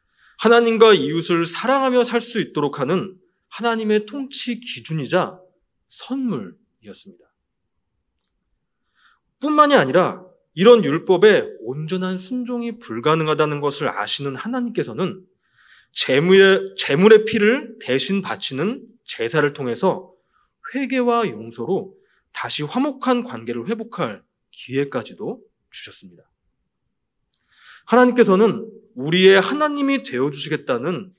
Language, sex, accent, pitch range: Korean, male, native, 160-230 Hz